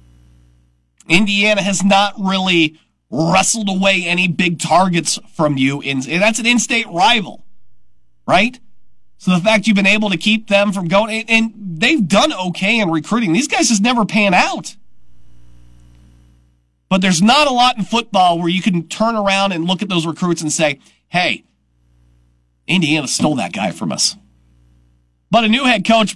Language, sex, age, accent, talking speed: English, male, 40-59, American, 160 wpm